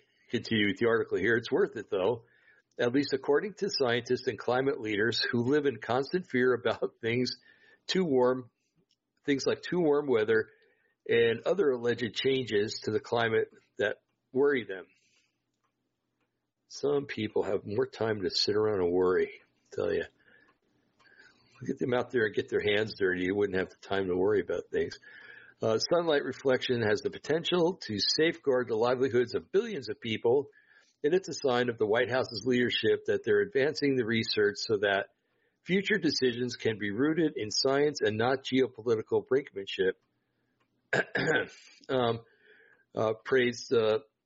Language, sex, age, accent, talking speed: English, male, 60-79, American, 155 wpm